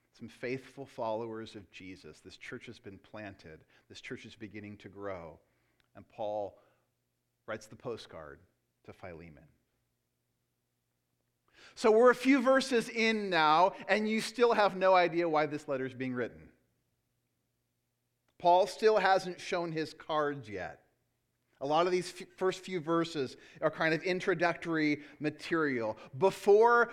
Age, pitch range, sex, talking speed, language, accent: 40-59, 135-190 Hz, male, 140 wpm, English, American